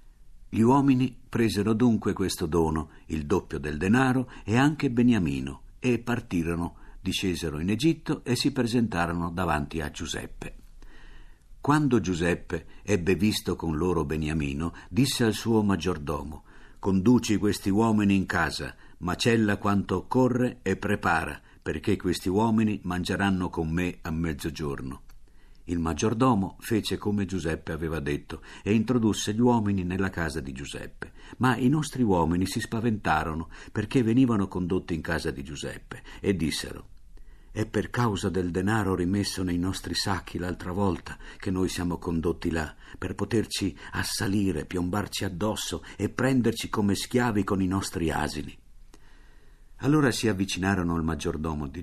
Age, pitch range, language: 50-69, 85-110 Hz, Italian